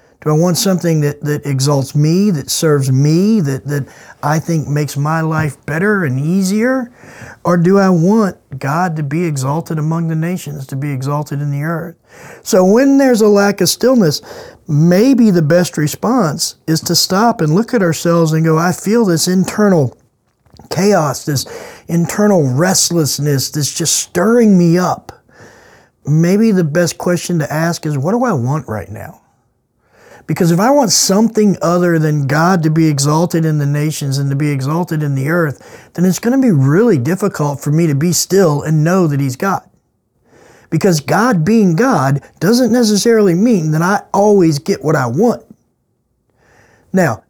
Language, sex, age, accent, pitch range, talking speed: English, male, 40-59, American, 145-195 Hz, 175 wpm